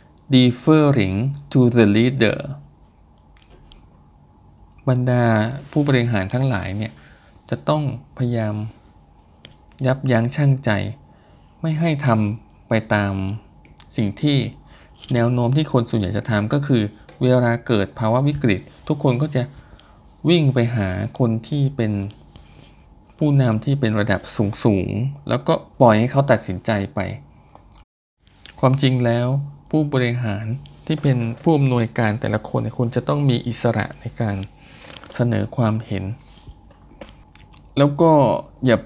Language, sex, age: Thai, male, 20-39